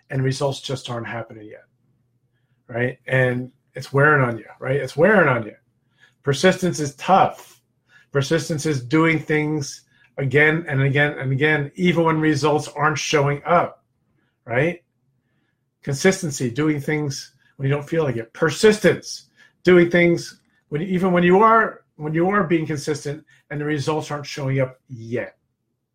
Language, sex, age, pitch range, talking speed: English, male, 40-59, 130-155 Hz, 155 wpm